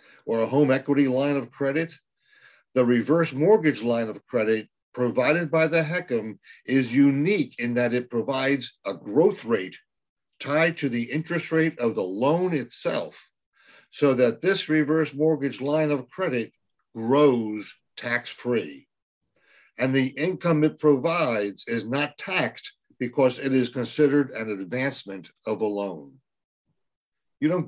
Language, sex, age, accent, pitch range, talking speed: English, male, 50-69, American, 120-150 Hz, 140 wpm